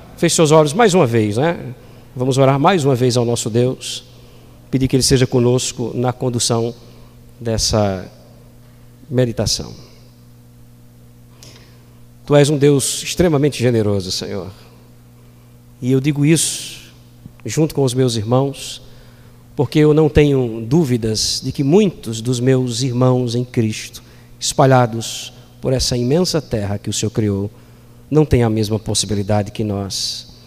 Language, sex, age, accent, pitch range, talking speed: Portuguese, male, 50-69, Brazilian, 110-135 Hz, 135 wpm